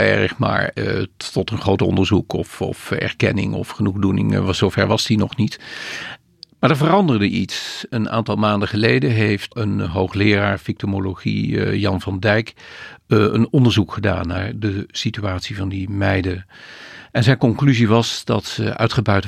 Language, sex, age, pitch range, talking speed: Dutch, male, 50-69, 85-110 Hz, 155 wpm